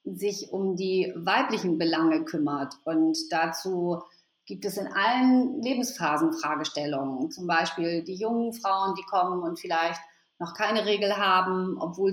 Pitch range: 175-215 Hz